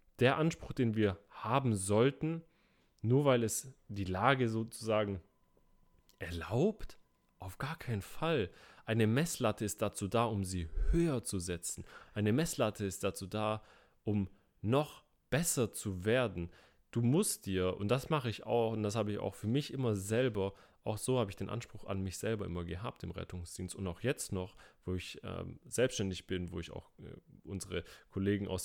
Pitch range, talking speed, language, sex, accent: 95-125 Hz, 175 wpm, German, male, German